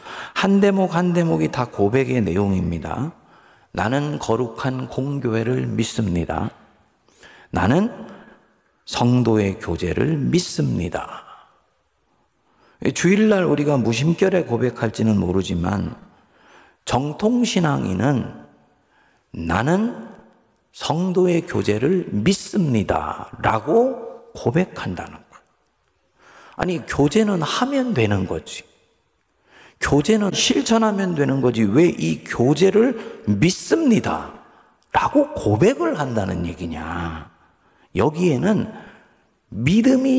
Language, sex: Korean, male